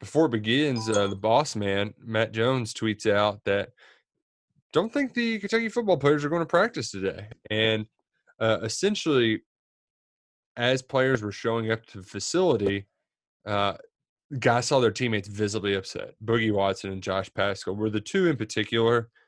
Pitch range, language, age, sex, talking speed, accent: 100-130 Hz, English, 20-39, male, 160 wpm, American